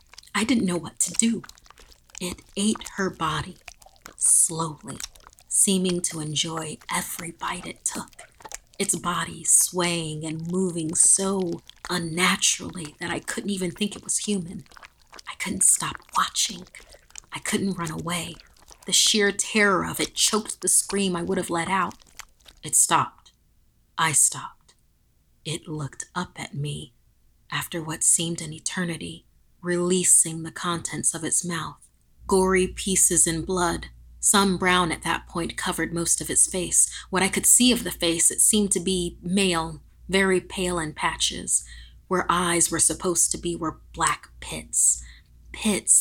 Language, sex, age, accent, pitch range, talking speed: English, female, 40-59, American, 160-190 Hz, 150 wpm